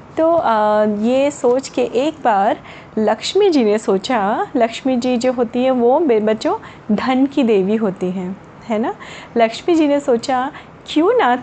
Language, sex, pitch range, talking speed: Hindi, female, 215-280 Hz, 160 wpm